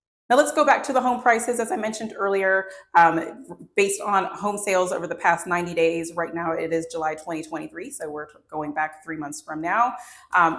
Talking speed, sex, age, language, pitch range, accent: 220 wpm, female, 30-49, English, 165-200 Hz, American